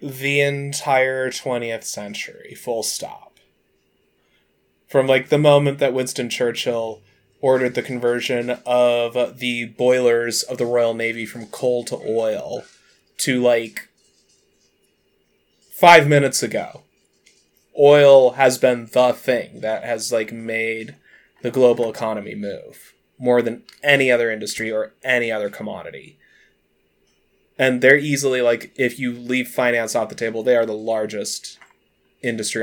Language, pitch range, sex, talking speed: English, 115-130 Hz, male, 130 wpm